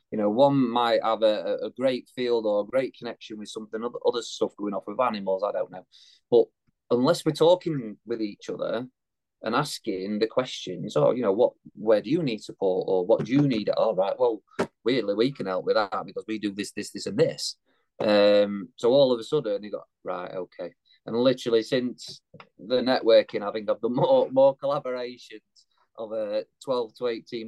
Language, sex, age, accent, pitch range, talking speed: English, male, 30-49, British, 110-155 Hz, 200 wpm